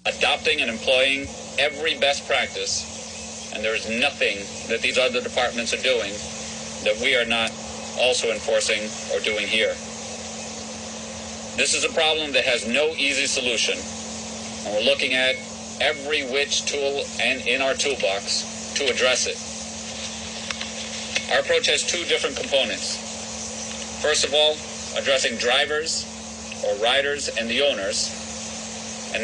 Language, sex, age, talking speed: English, male, 40-59, 135 wpm